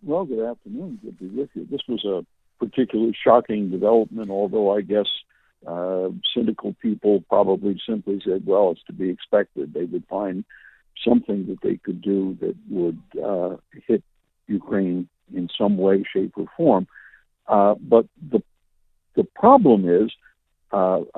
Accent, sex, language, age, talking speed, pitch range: American, male, English, 60-79, 150 wpm, 100-150 Hz